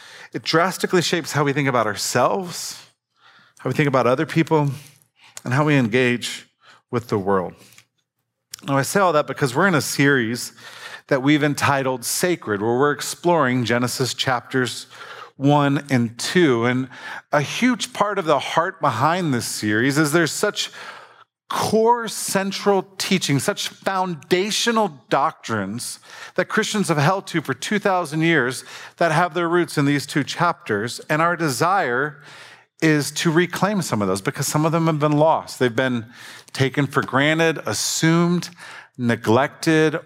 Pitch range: 130-170 Hz